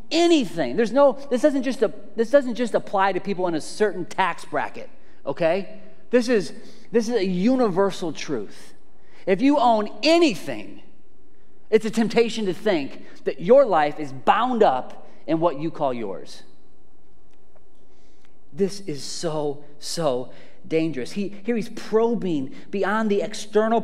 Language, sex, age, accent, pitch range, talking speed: English, male, 30-49, American, 160-220 Hz, 145 wpm